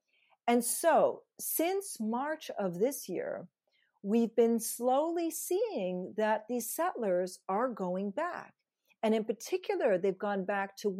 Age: 40-59